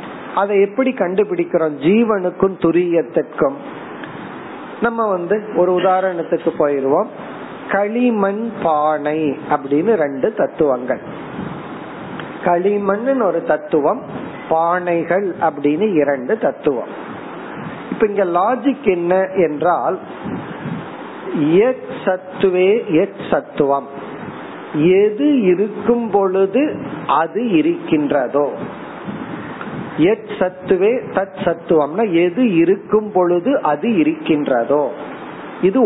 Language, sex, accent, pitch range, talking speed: Tamil, male, native, 165-235 Hz, 70 wpm